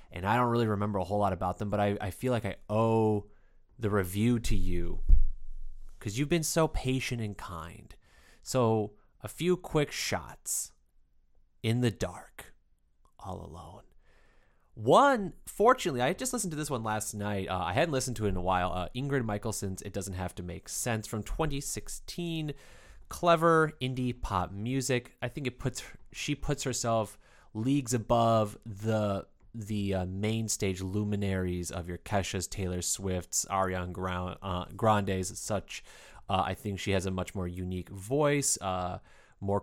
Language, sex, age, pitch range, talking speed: English, male, 30-49, 95-120 Hz, 165 wpm